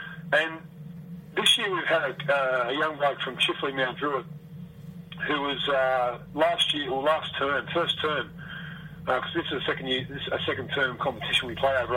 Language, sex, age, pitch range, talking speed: English, male, 40-59, 135-165 Hz, 200 wpm